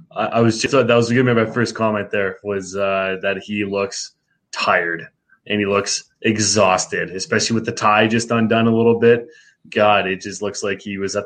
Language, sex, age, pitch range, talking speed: English, male, 20-39, 105-120 Hz, 205 wpm